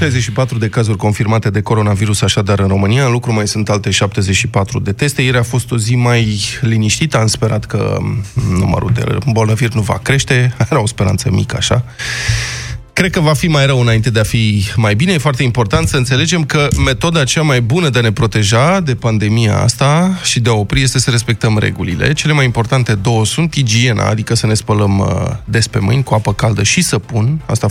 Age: 20-39